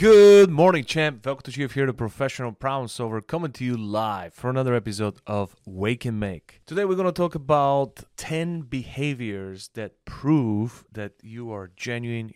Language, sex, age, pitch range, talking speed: English, male, 30-49, 100-130 Hz, 180 wpm